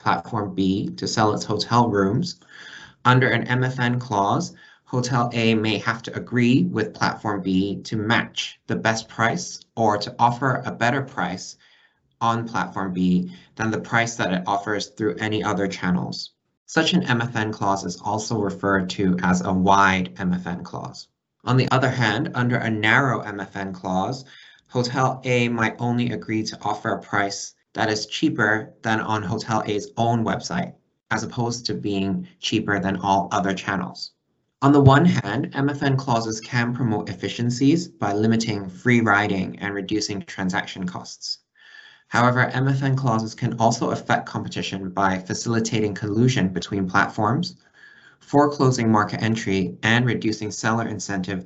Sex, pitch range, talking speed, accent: male, 100-120 Hz, 150 wpm, American